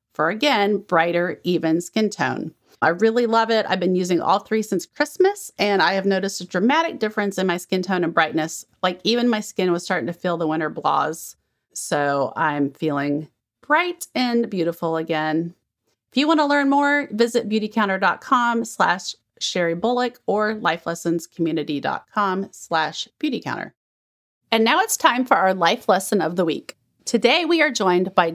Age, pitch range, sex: 30-49, 180-250 Hz, female